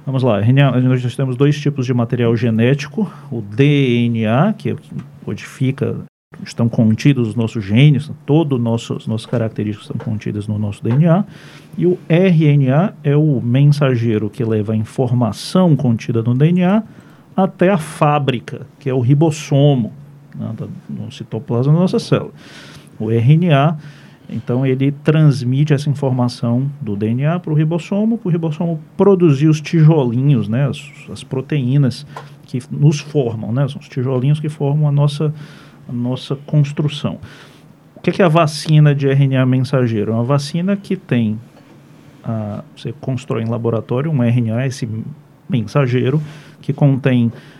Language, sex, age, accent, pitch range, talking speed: Portuguese, male, 40-59, Brazilian, 125-155 Hz, 140 wpm